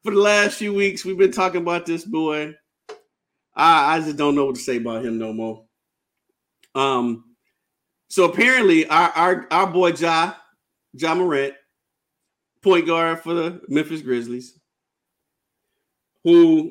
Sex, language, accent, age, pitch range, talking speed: male, English, American, 50-69, 145-200 Hz, 145 wpm